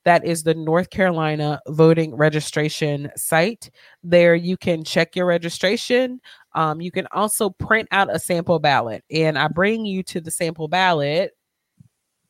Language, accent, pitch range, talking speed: English, American, 150-175 Hz, 150 wpm